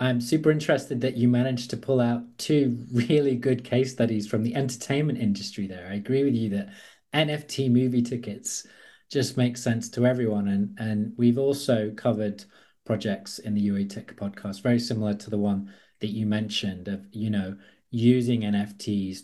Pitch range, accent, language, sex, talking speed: 100-120 Hz, British, English, male, 175 wpm